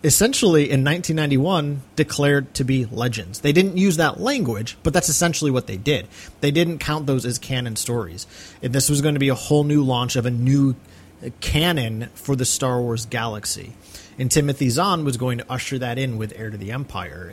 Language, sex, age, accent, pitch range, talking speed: English, male, 30-49, American, 120-150 Hz, 200 wpm